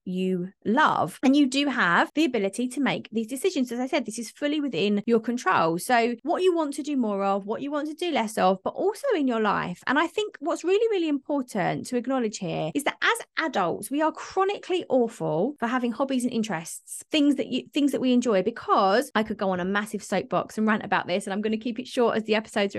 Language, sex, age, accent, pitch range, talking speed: English, female, 30-49, British, 230-310 Hz, 245 wpm